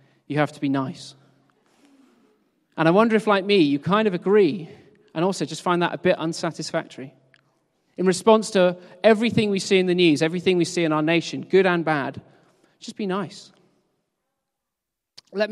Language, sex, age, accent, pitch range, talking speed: English, male, 40-59, British, 145-180 Hz, 175 wpm